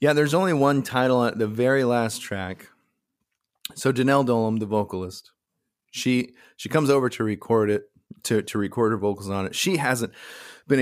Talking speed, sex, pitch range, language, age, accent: 175 wpm, male, 100-125 Hz, English, 30-49, American